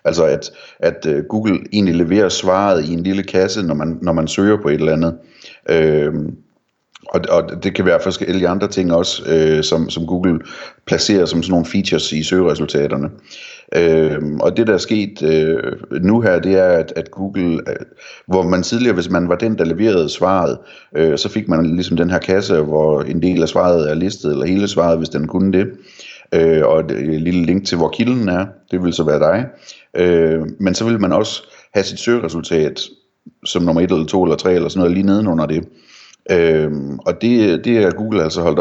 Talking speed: 190 wpm